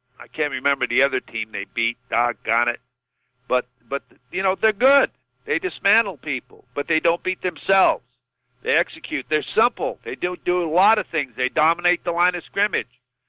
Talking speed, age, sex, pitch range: 185 wpm, 60-79, male, 130-175 Hz